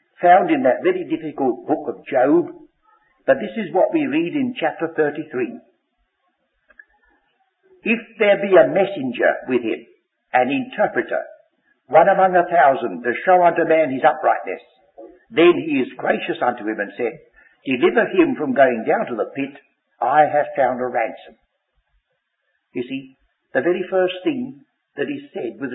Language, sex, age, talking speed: English, male, 60-79, 155 wpm